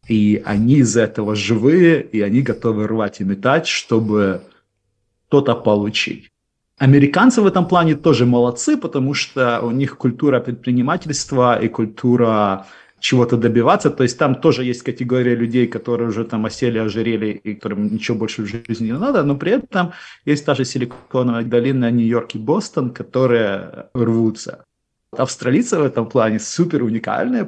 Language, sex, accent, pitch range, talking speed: Russian, male, native, 110-145 Hz, 150 wpm